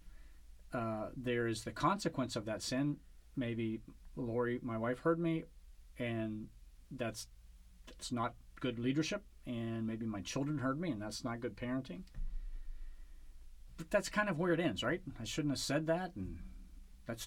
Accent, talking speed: American, 160 wpm